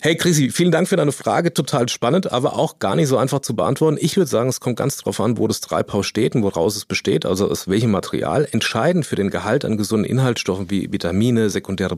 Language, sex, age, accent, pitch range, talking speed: German, male, 40-59, German, 105-130 Hz, 235 wpm